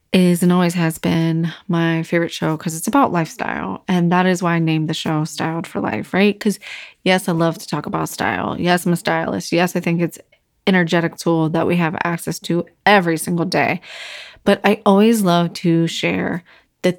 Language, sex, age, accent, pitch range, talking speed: English, female, 20-39, American, 165-195 Hz, 205 wpm